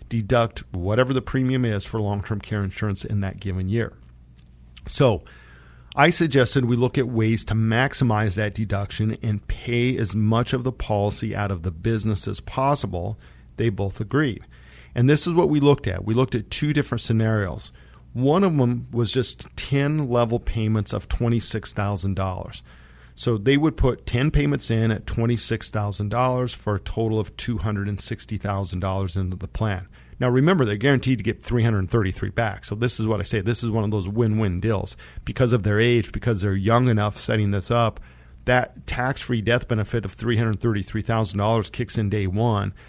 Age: 40-59